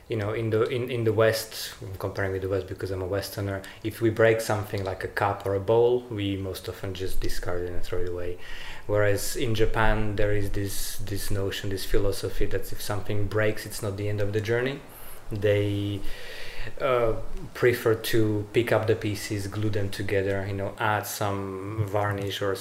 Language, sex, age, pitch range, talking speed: English, male, 20-39, 100-110 Hz, 195 wpm